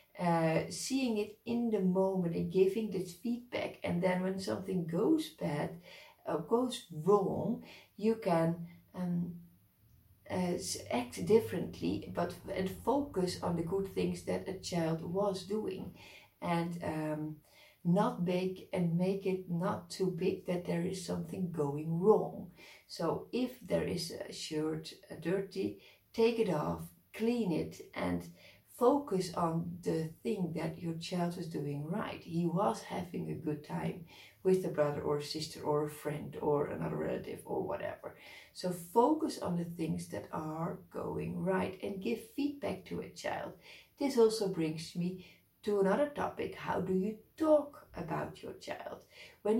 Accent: Dutch